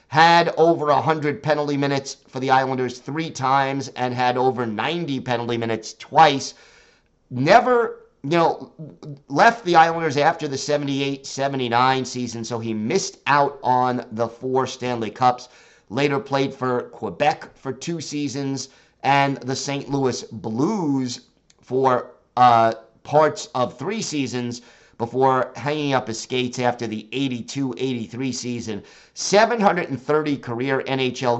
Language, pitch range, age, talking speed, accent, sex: English, 120-145 Hz, 50-69, 125 wpm, American, male